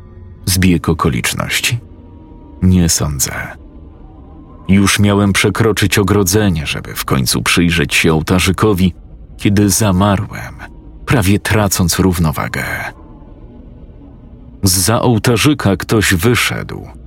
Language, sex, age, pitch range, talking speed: Polish, male, 40-59, 80-110 Hz, 80 wpm